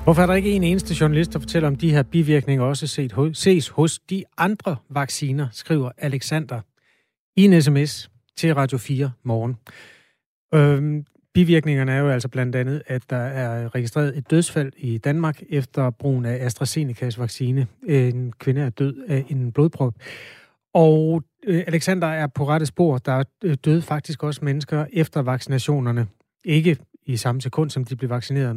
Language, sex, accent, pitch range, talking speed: Danish, male, native, 125-155 Hz, 165 wpm